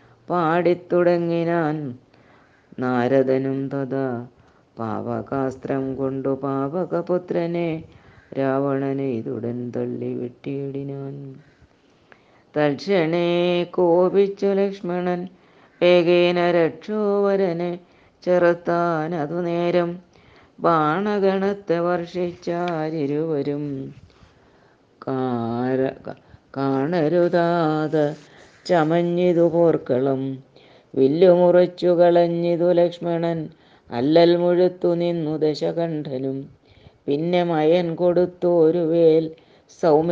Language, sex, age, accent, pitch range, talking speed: Malayalam, female, 20-39, native, 135-175 Hz, 50 wpm